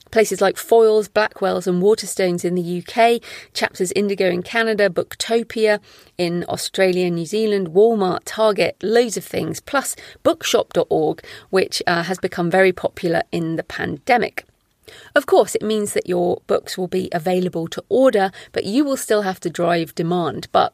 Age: 40-59